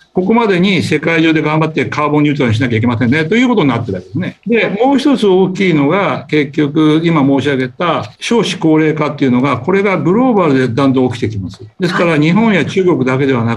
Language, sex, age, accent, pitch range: Japanese, male, 60-79, native, 125-165 Hz